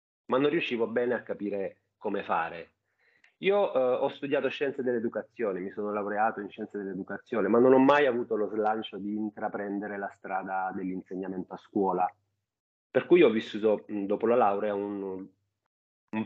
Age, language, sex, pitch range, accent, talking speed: 30-49, Italian, male, 95-115 Hz, native, 160 wpm